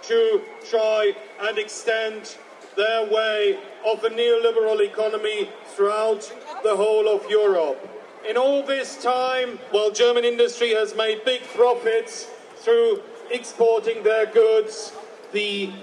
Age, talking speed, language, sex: 50-69, 120 wpm, German, male